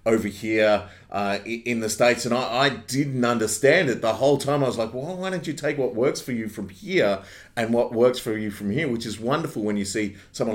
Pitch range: 100-120 Hz